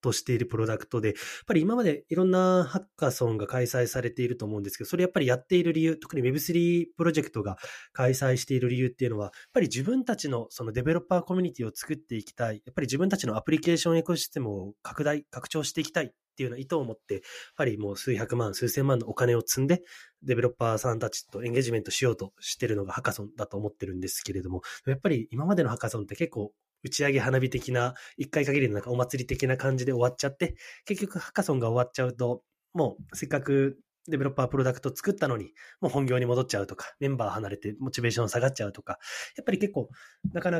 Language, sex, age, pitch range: Japanese, male, 20-39, 115-155 Hz